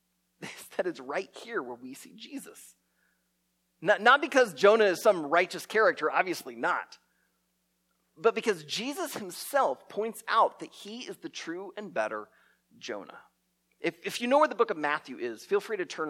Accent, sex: American, male